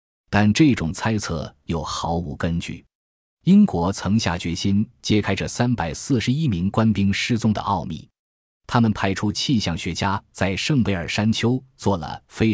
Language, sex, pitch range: Chinese, male, 85-115 Hz